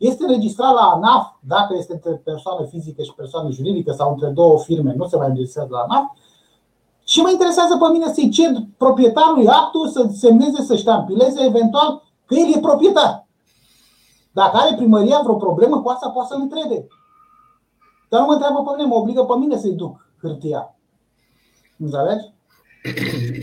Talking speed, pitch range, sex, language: 165 wpm, 155-255 Hz, male, Romanian